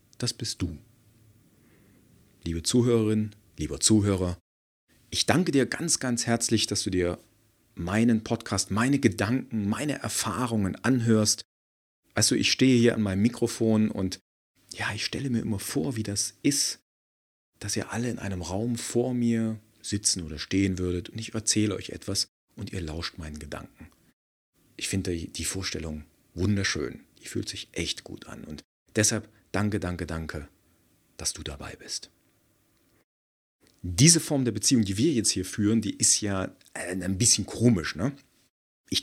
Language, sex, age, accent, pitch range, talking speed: German, male, 40-59, German, 95-120 Hz, 150 wpm